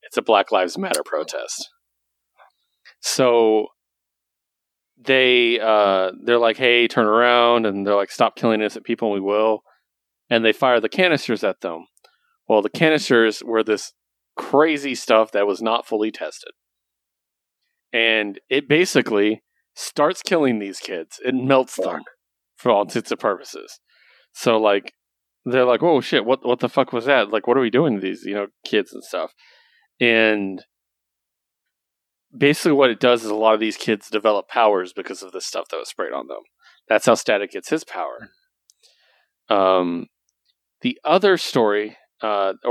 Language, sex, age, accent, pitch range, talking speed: English, male, 30-49, American, 100-135 Hz, 160 wpm